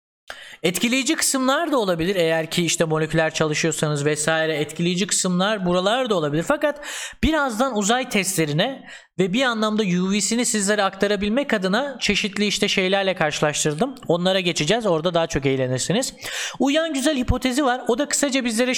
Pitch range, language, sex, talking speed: 175-260 Hz, Turkish, male, 140 wpm